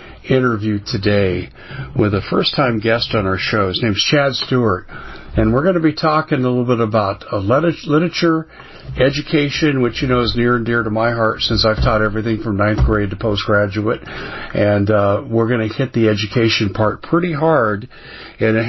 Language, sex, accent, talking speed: English, male, American, 190 wpm